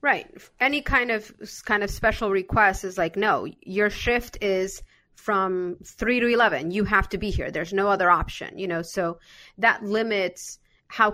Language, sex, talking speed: English, female, 180 wpm